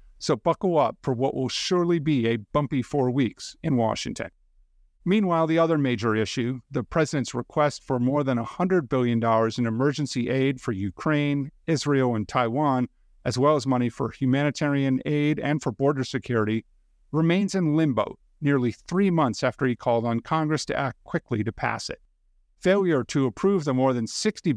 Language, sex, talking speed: English, male, 170 wpm